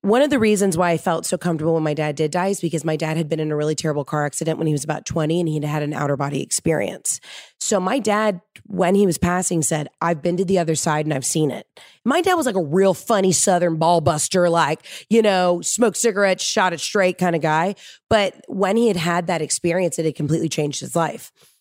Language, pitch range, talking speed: English, 160-190 Hz, 250 wpm